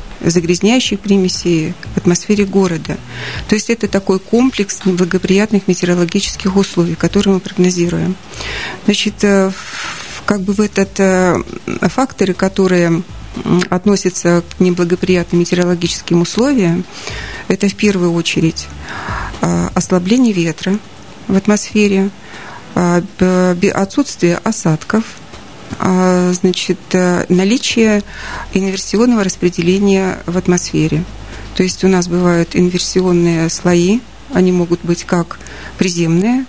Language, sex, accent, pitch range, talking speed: Russian, female, native, 175-200 Hz, 90 wpm